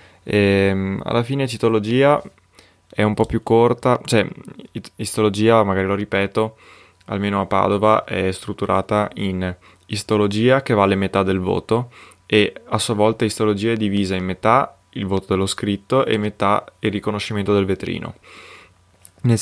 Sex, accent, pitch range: male, native, 95-110 Hz